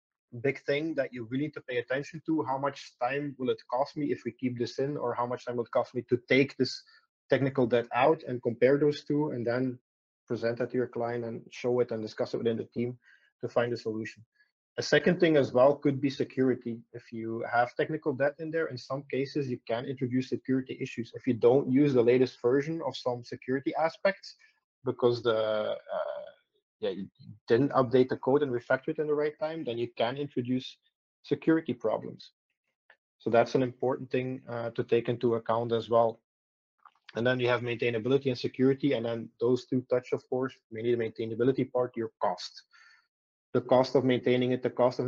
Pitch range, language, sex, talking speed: 120-145 Hz, English, male, 210 wpm